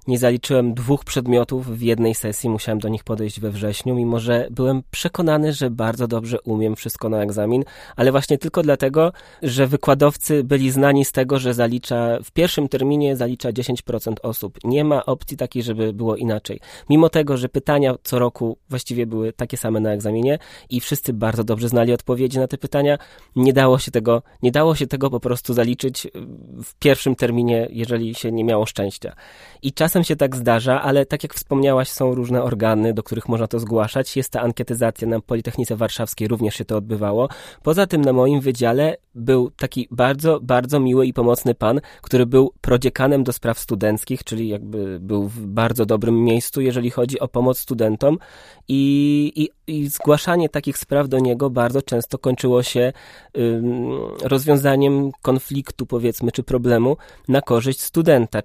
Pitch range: 115-140 Hz